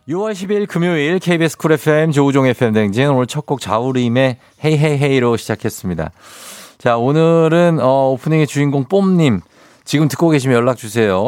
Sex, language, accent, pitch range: male, Korean, native, 105-145 Hz